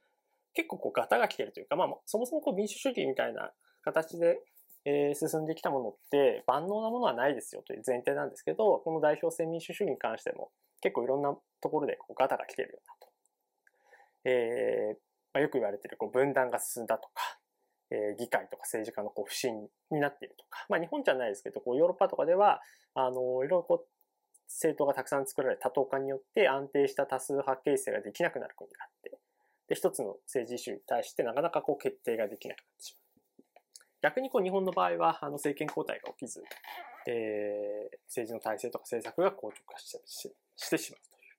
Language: Japanese